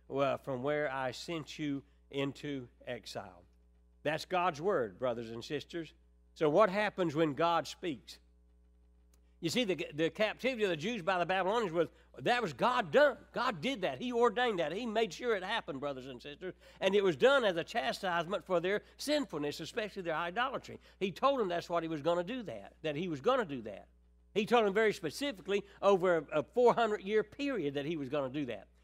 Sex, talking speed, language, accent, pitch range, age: male, 200 wpm, English, American, 155-220 Hz, 60-79